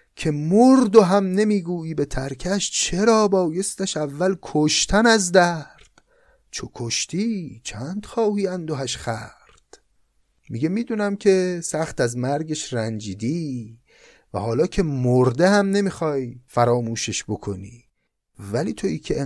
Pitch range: 120-175 Hz